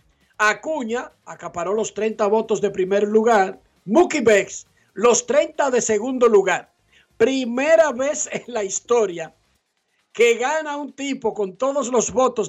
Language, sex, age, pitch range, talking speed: Spanish, male, 60-79, 200-250 Hz, 135 wpm